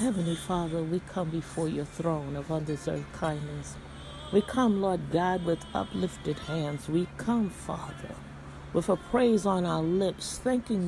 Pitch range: 150-210 Hz